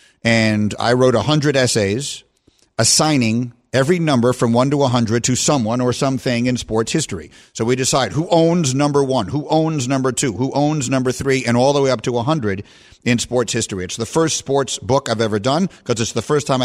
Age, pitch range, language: 50-69, 115-135 Hz, English